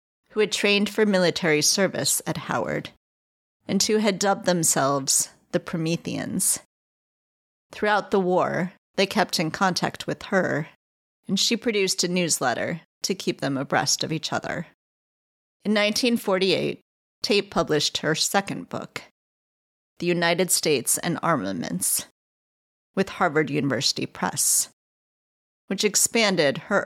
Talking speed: 125 wpm